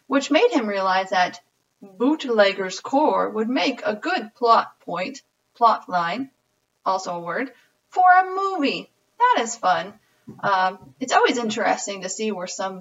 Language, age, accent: English, 30-49, American